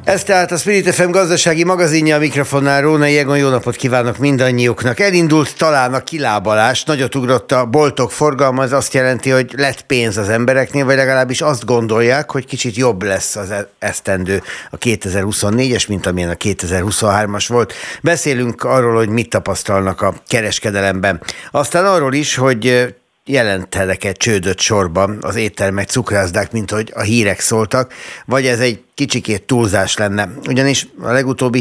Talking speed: 150 wpm